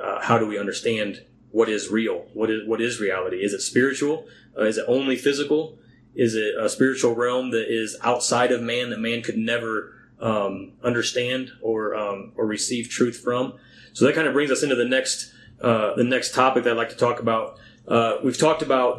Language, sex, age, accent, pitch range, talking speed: English, male, 30-49, American, 115-130 Hz, 210 wpm